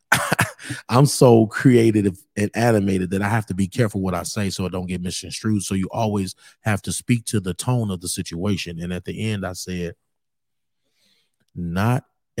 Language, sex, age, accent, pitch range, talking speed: English, male, 30-49, American, 90-105 Hz, 185 wpm